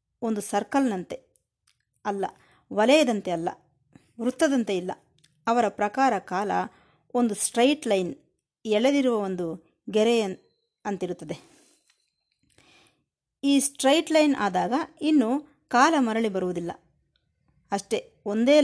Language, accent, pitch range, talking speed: Kannada, native, 195-270 Hz, 85 wpm